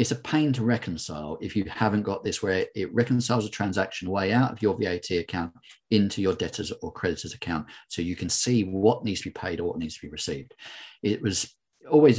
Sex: male